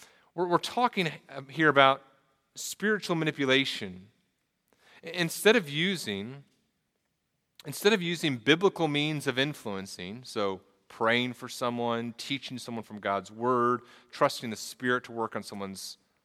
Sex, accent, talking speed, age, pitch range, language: male, American, 110 wpm, 40-59, 110-145 Hz, English